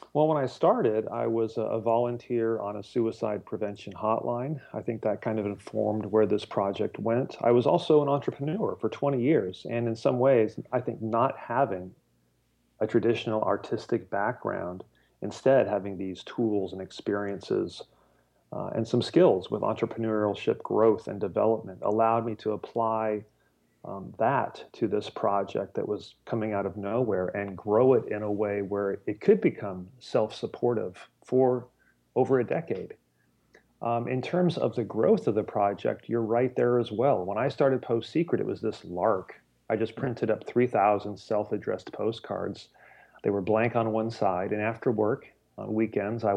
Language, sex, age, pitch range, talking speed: English, male, 40-59, 100-120 Hz, 170 wpm